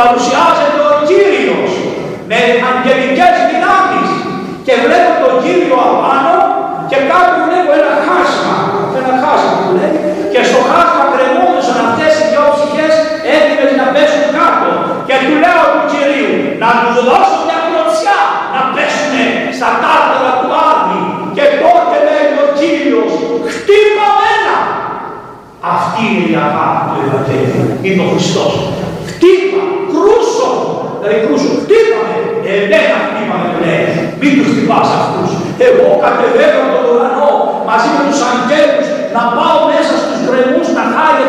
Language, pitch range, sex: Greek, 260-335 Hz, male